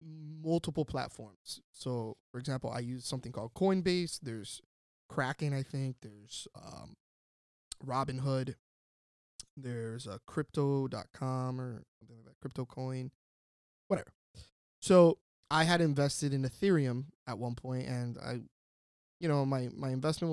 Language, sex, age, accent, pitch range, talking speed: English, male, 20-39, American, 115-145 Hz, 125 wpm